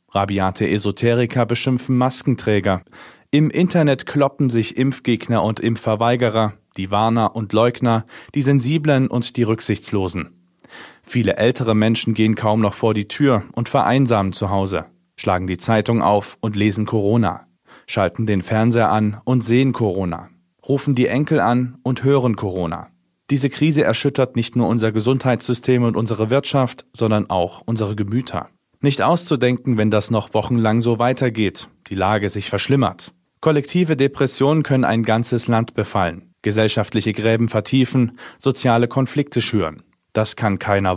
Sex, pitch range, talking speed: male, 105-130 Hz, 140 wpm